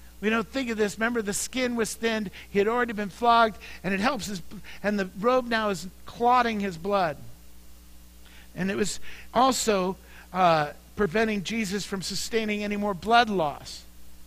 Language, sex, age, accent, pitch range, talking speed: English, male, 50-69, American, 155-230 Hz, 170 wpm